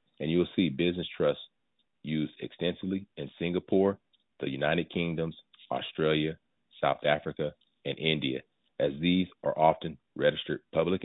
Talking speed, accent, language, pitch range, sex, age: 130 wpm, American, English, 75-90 Hz, male, 40-59